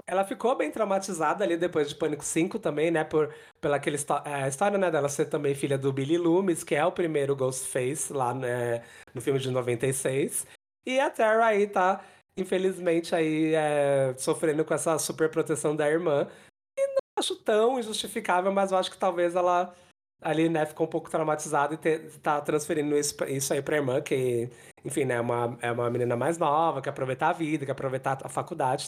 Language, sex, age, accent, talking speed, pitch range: Portuguese, male, 20-39, Brazilian, 195 wpm, 145-195 Hz